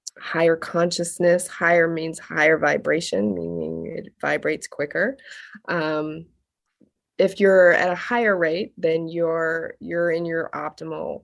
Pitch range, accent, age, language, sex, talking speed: 165-185 Hz, American, 20-39, English, female, 125 wpm